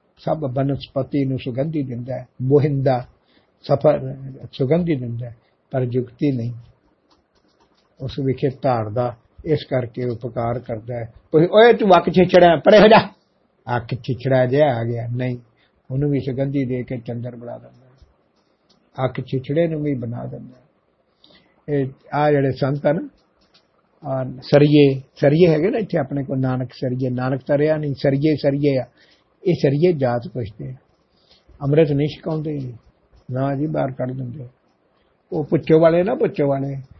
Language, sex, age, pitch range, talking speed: Punjabi, male, 50-69, 125-150 Hz, 145 wpm